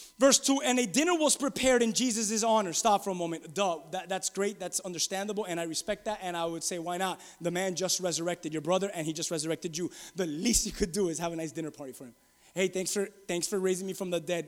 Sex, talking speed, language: male, 265 wpm, English